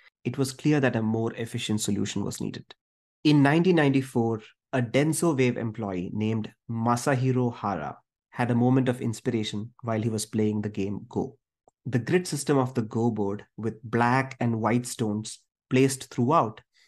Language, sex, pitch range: English, male, 110-135 Hz